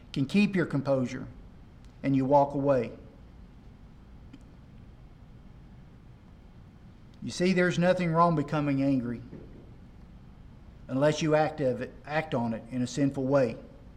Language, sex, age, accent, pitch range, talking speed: English, male, 50-69, American, 130-170 Hz, 105 wpm